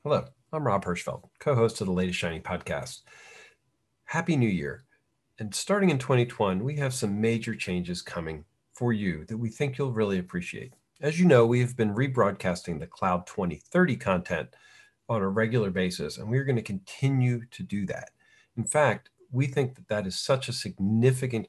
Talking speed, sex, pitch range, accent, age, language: 180 wpm, male, 100-130 Hz, American, 40-59, English